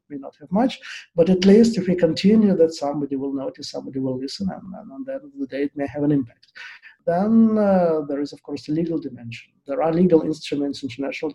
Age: 50-69